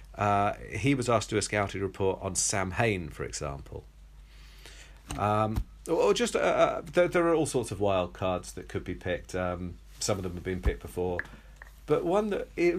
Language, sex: English, male